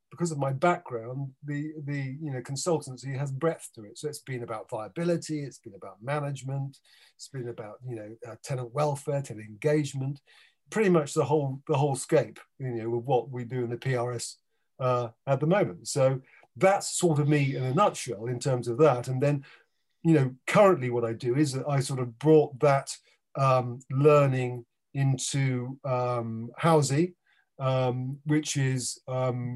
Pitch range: 125-155 Hz